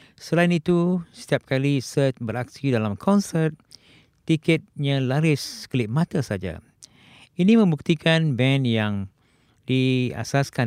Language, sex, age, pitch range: Japanese, male, 50-69, 115-150 Hz